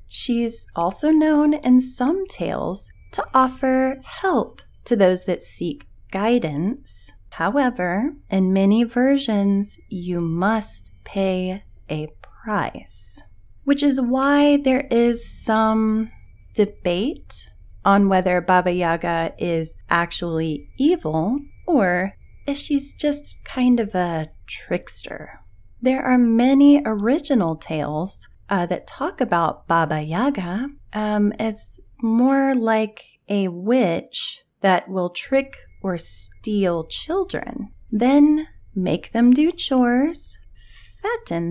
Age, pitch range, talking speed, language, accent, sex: 30-49, 170-260 Hz, 105 wpm, English, American, female